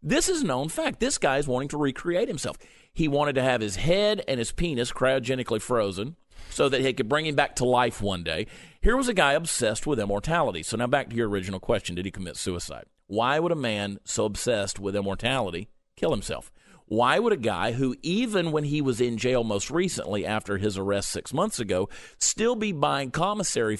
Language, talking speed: English, 210 wpm